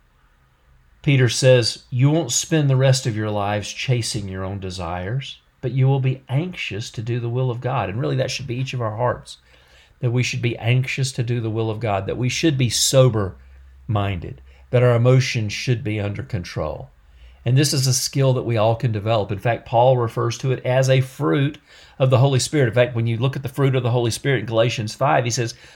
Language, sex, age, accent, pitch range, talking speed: English, male, 50-69, American, 105-140 Hz, 225 wpm